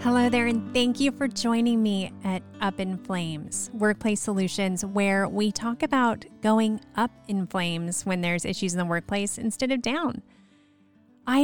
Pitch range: 175-225 Hz